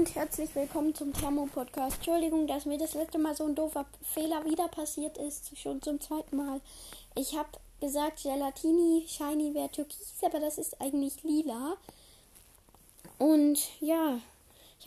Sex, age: female, 10-29